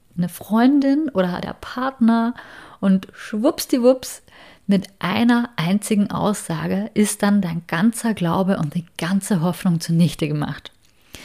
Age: 30-49